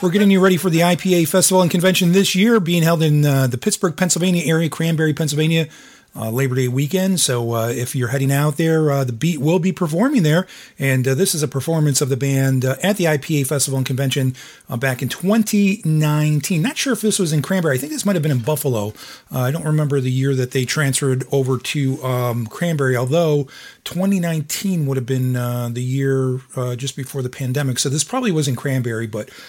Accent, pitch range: American, 130-170 Hz